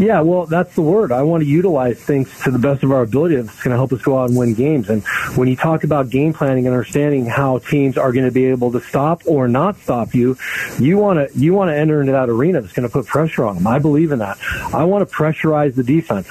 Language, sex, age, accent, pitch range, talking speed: English, male, 40-59, American, 130-160 Hz, 275 wpm